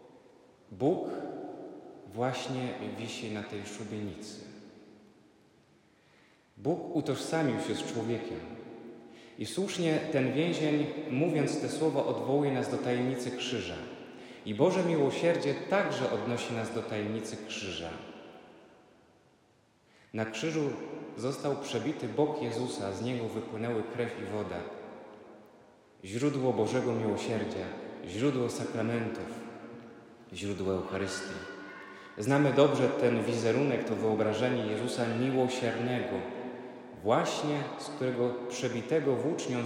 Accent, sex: native, male